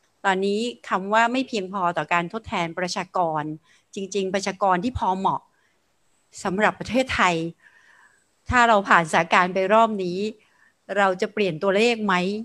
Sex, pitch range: female, 180-225 Hz